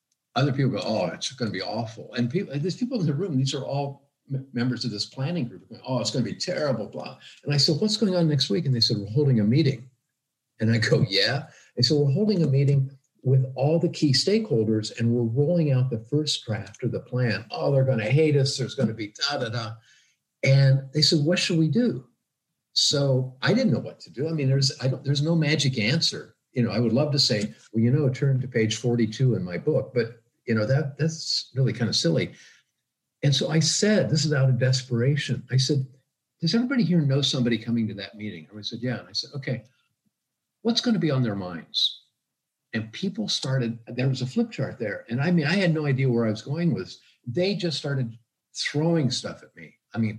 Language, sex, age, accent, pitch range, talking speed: English, male, 50-69, American, 120-150 Hz, 240 wpm